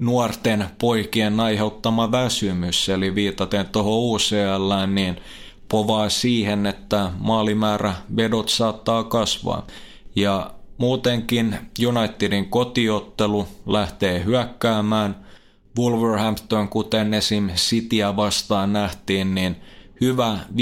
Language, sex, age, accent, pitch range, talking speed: Finnish, male, 20-39, native, 100-115 Hz, 85 wpm